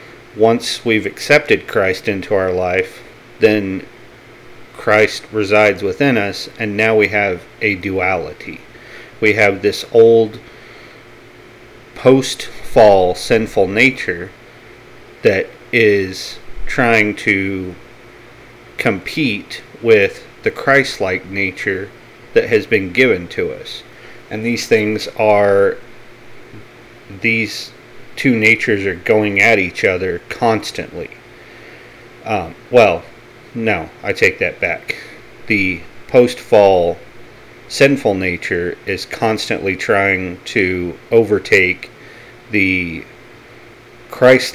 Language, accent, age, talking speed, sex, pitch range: English, American, 40-59, 95 wpm, male, 95-120 Hz